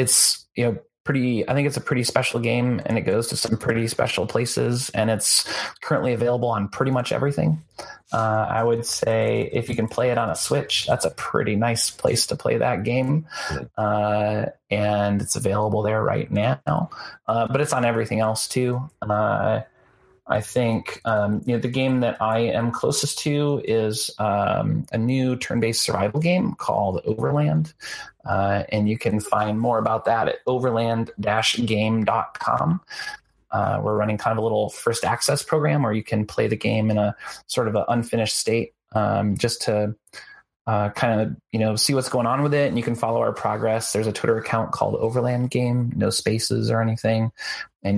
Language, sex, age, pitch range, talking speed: English, male, 30-49, 110-125 Hz, 185 wpm